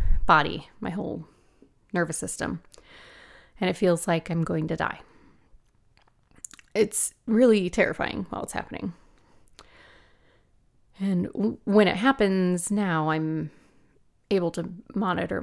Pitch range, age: 170-220 Hz, 30-49